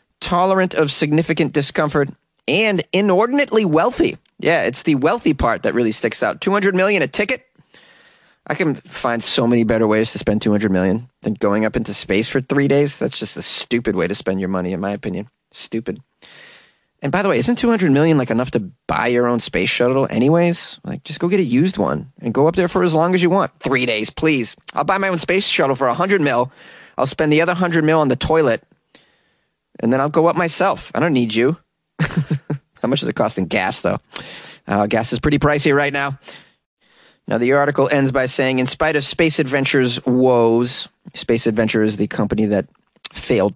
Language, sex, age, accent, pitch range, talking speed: English, male, 30-49, American, 120-180 Hz, 210 wpm